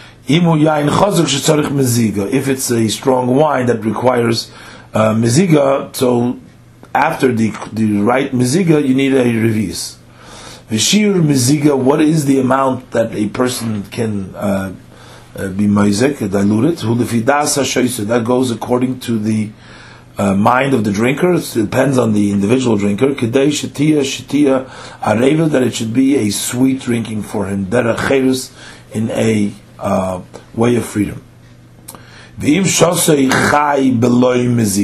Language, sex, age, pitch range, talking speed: English, male, 40-59, 115-135 Hz, 115 wpm